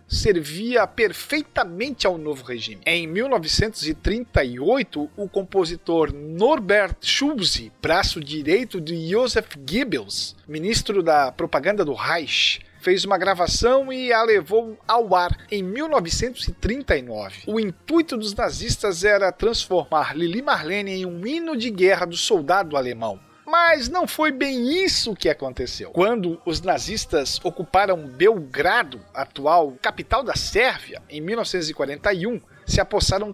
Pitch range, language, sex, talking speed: 155-225 Hz, Portuguese, male, 120 wpm